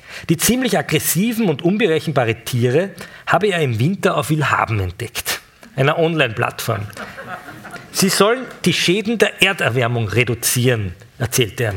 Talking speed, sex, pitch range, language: 120 wpm, male, 125-175 Hz, German